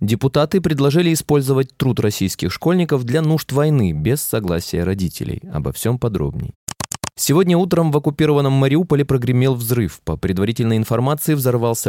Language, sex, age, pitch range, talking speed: Russian, male, 20-39, 105-140 Hz, 130 wpm